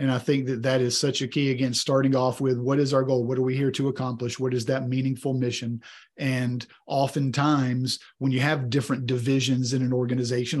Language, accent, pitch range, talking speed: English, American, 125-135 Hz, 215 wpm